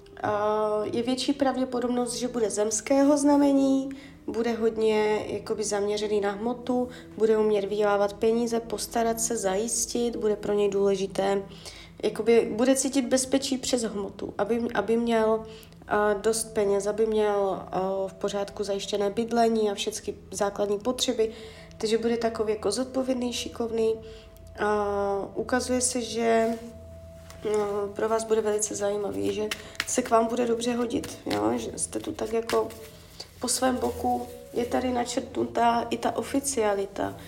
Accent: native